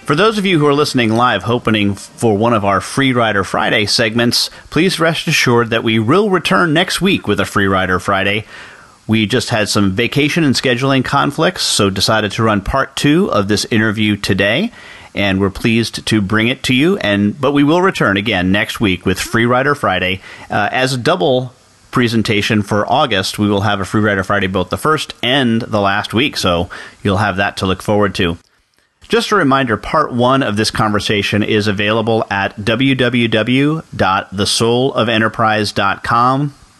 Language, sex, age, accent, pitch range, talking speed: English, male, 40-59, American, 100-125 Hz, 175 wpm